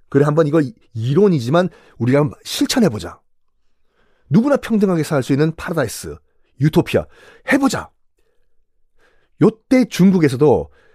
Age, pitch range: 40-59, 120-175 Hz